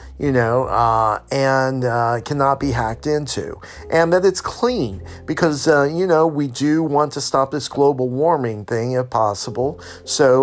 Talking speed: 165 wpm